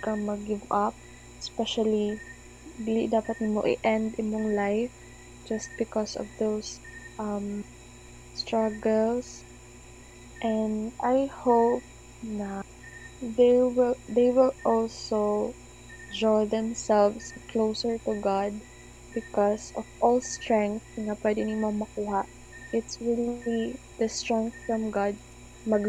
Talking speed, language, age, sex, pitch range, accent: 100 wpm, Filipino, 20-39, female, 205-225 Hz, native